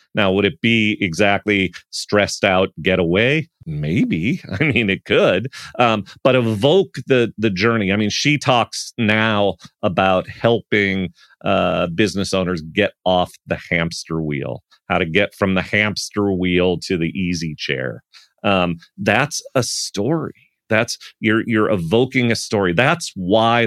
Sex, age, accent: male, 40-59, American